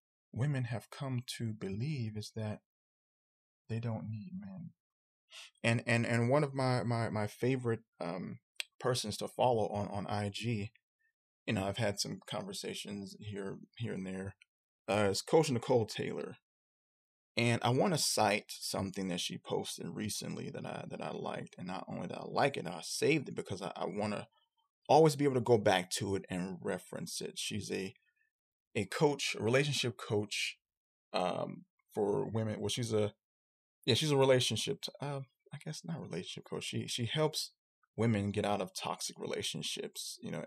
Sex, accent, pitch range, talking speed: male, American, 105-145 Hz, 175 wpm